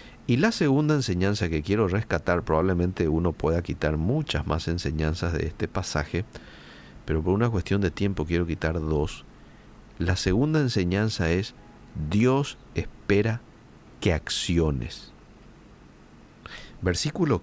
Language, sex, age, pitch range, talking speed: Spanish, male, 50-69, 85-130 Hz, 120 wpm